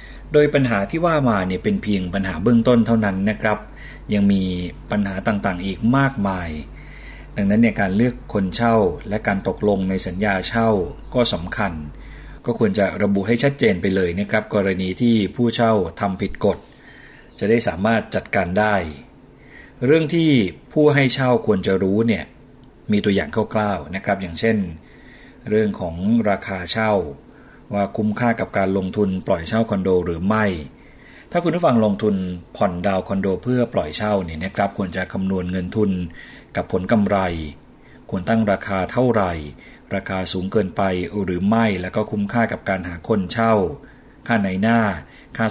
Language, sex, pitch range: Thai, male, 95-115 Hz